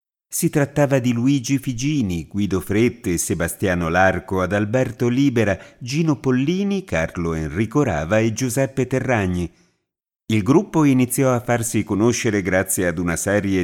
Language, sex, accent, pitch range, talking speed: Italian, male, native, 95-125 Hz, 130 wpm